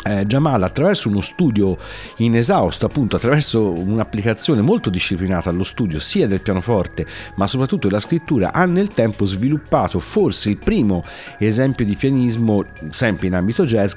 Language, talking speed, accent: Italian, 145 wpm, native